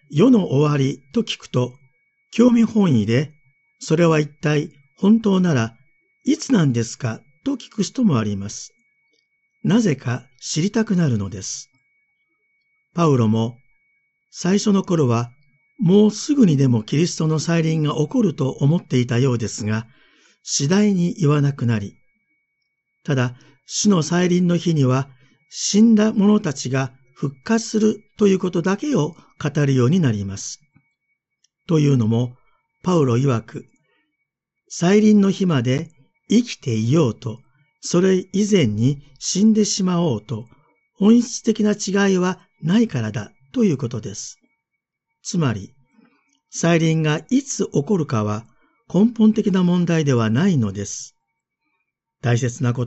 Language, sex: Japanese, male